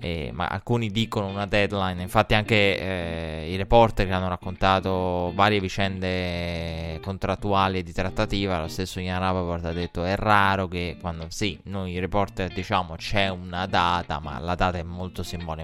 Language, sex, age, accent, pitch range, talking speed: Italian, male, 20-39, native, 90-105 Hz, 155 wpm